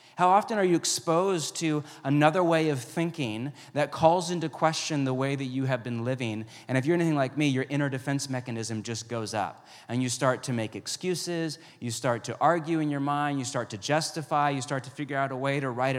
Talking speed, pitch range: 225 wpm, 130-165 Hz